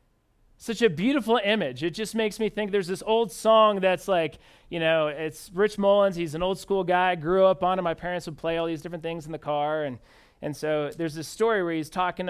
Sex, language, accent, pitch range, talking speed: male, English, American, 160-205 Hz, 240 wpm